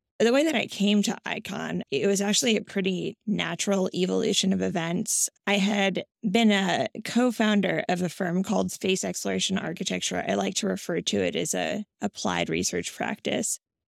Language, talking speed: English, 170 wpm